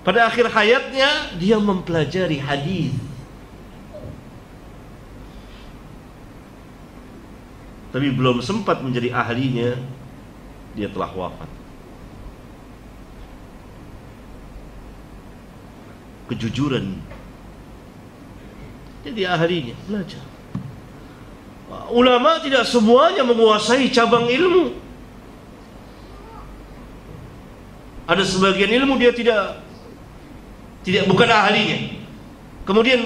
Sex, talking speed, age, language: male, 60 wpm, 50-69, Malay